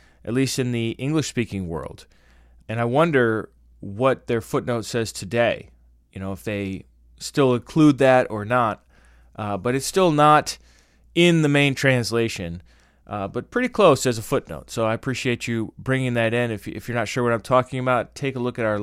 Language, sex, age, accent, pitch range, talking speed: English, male, 30-49, American, 100-125 Hz, 190 wpm